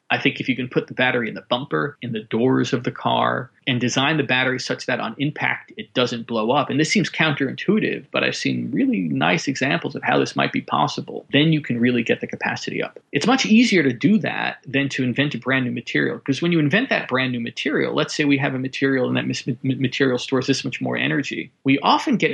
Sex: male